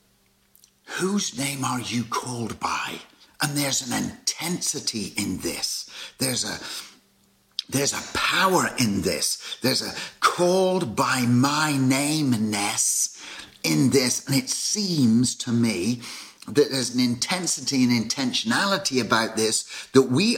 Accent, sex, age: British, male, 50-69